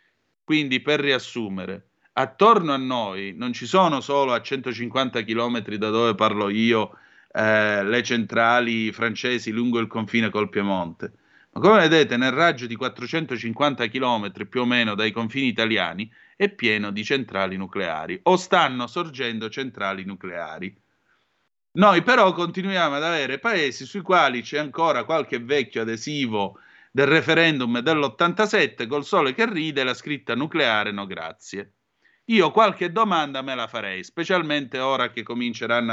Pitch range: 115-165 Hz